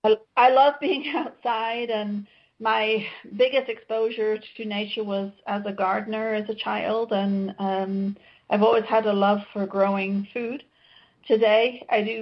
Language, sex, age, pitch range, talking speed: Turkish, female, 40-59, 200-225 Hz, 145 wpm